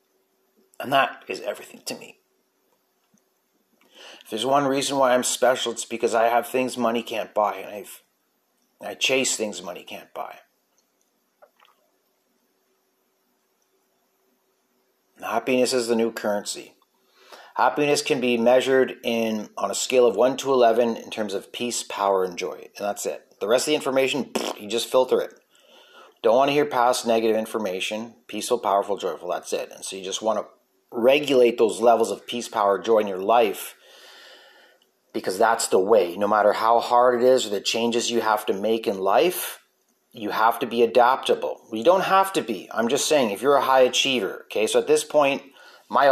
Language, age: English, 30-49